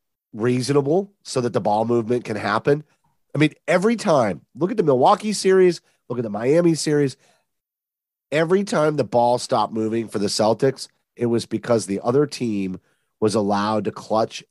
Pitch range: 120-165 Hz